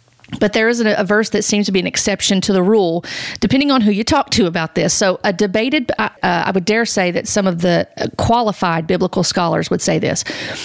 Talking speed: 230 wpm